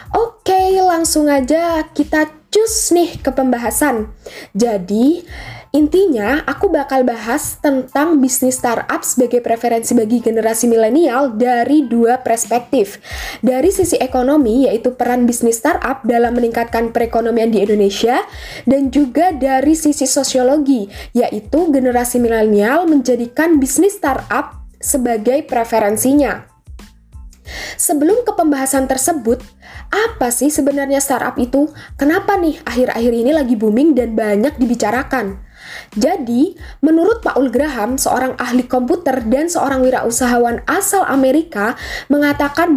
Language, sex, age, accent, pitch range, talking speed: Indonesian, female, 10-29, native, 240-305 Hz, 110 wpm